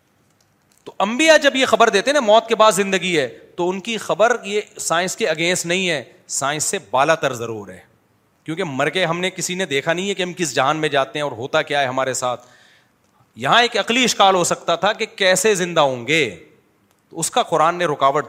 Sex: male